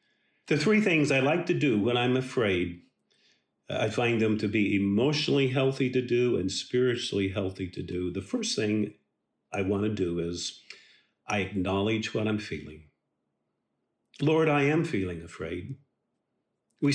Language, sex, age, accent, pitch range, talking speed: English, male, 50-69, American, 105-140 Hz, 150 wpm